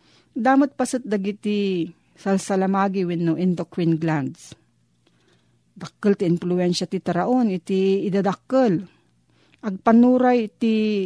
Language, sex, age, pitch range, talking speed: Filipino, female, 40-59, 165-215 Hz, 90 wpm